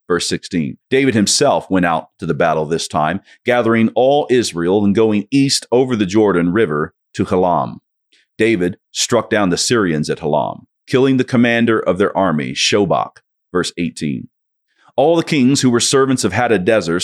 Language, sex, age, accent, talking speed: English, male, 40-59, American, 165 wpm